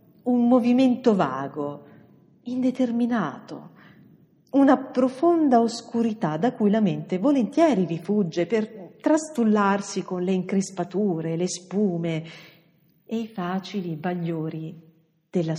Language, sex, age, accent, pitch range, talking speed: Italian, female, 50-69, native, 170-235 Hz, 95 wpm